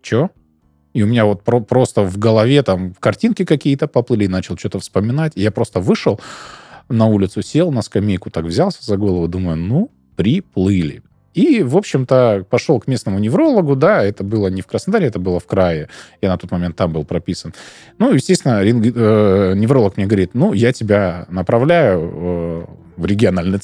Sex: male